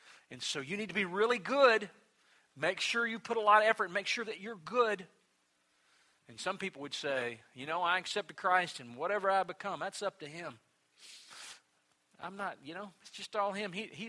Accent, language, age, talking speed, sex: American, English, 40-59, 215 wpm, male